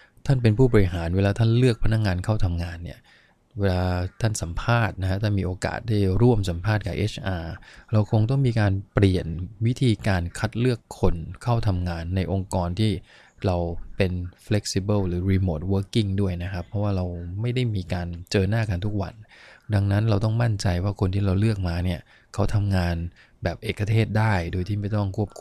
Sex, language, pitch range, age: male, English, 90-110 Hz, 20-39